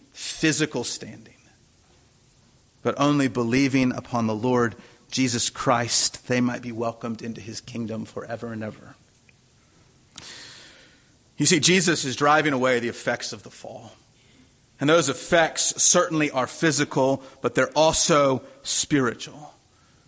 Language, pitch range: English, 125-155 Hz